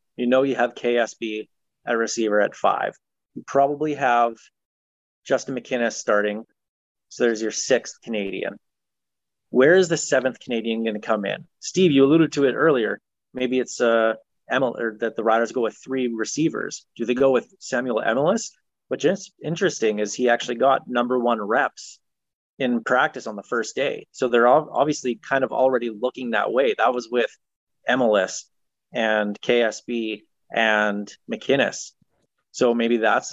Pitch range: 110-130 Hz